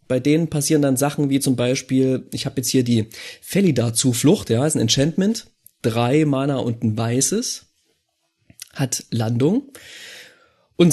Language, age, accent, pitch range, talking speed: German, 30-49, German, 115-150 Hz, 150 wpm